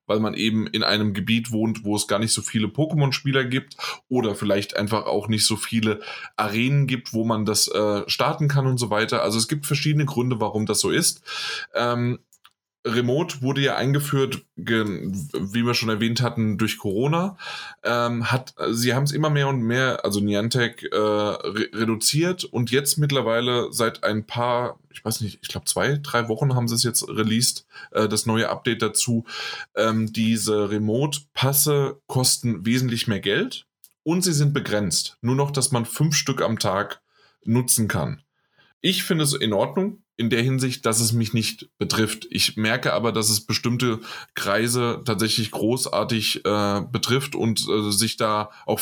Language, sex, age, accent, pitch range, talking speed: German, male, 20-39, German, 110-130 Hz, 165 wpm